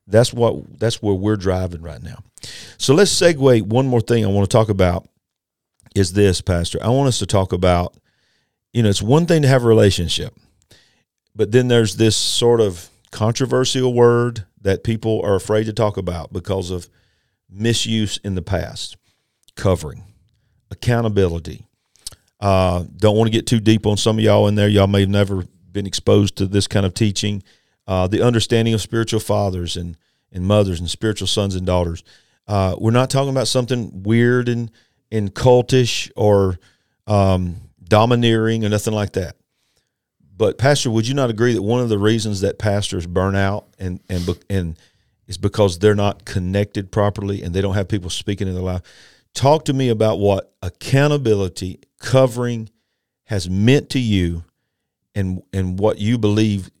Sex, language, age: male, English, 40-59